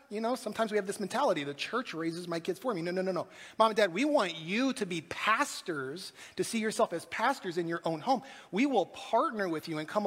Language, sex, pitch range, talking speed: English, male, 170-230 Hz, 255 wpm